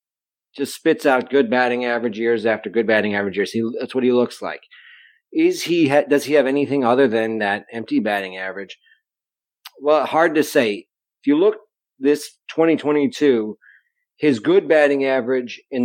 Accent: American